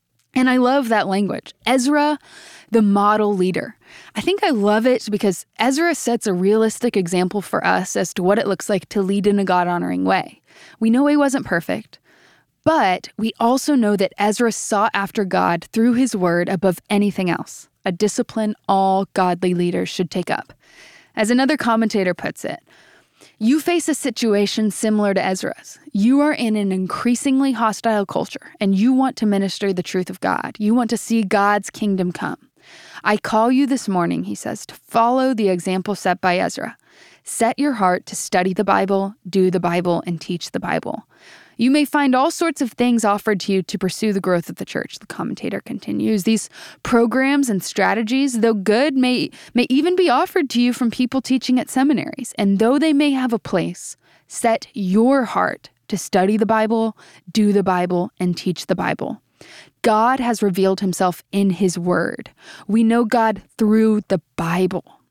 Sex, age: female, 10-29